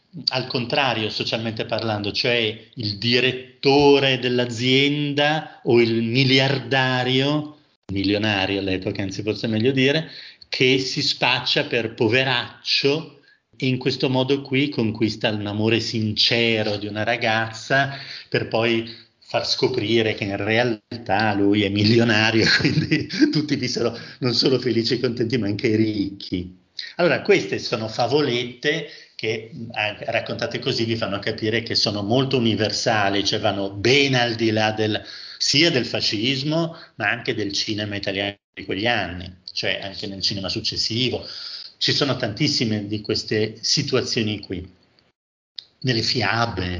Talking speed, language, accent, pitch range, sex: 130 wpm, Italian, native, 105-135 Hz, male